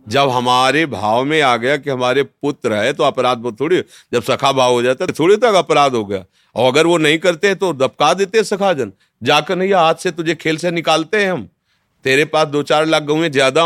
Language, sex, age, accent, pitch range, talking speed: Hindi, male, 40-59, native, 130-190 Hz, 230 wpm